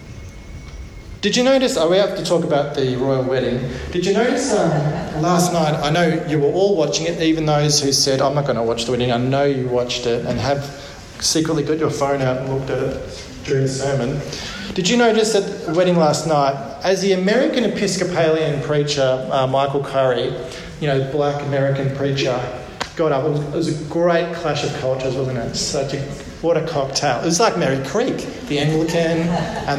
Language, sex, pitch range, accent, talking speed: English, male, 135-170 Hz, Australian, 205 wpm